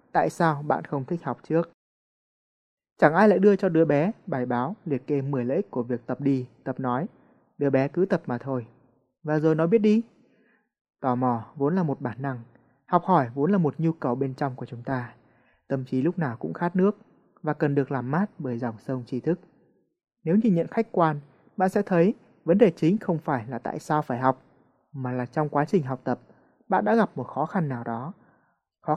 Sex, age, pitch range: male, 20-39, 130-180 Hz